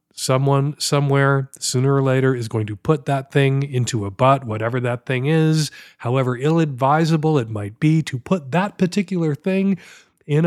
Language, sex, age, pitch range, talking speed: English, male, 40-59, 125-155 Hz, 170 wpm